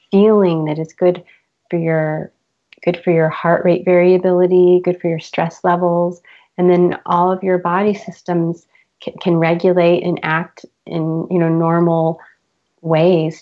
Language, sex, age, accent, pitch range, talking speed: English, female, 30-49, American, 160-185 Hz, 150 wpm